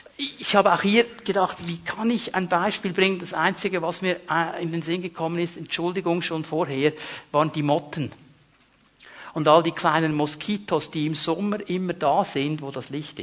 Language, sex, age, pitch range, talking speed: German, male, 50-69, 170-235 Hz, 180 wpm